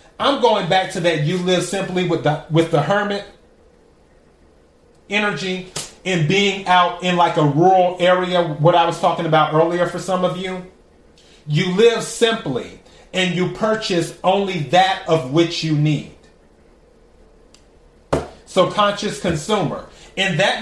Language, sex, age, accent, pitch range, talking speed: English, male, 30-49, American, 160-185 Hz, 145 wpm